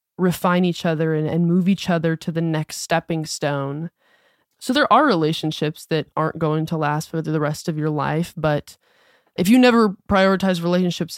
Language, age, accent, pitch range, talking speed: English, 20-39, American, 160-195 Hz, 175 wpm